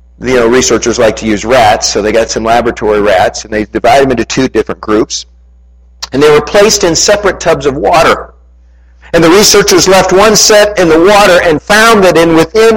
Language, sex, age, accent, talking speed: English, male, 50-69, American, 205 wpm